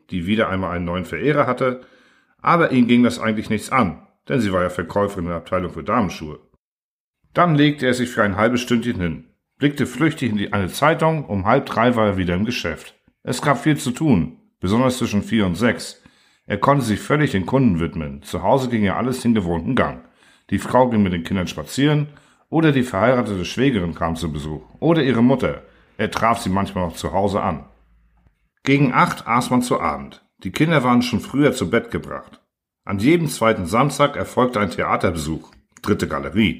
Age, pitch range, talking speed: 50-69, 90-130 Hz, 195 wpm